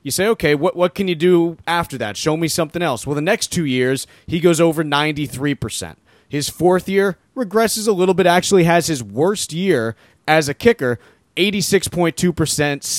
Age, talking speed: 30-49, 180 wpm